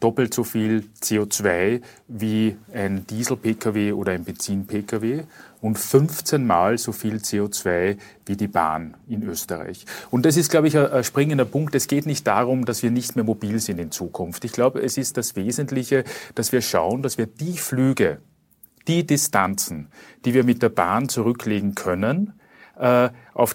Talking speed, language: 165 wpm, German